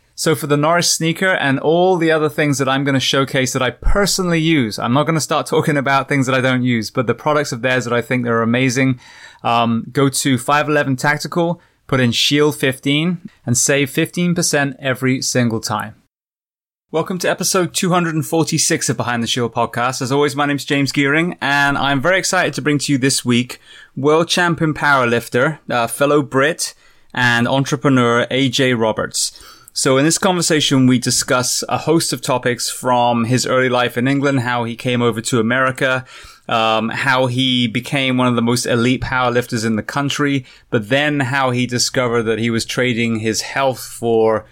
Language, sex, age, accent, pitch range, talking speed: English, male, 20-39, British, 120-145 Hz, 190 wpm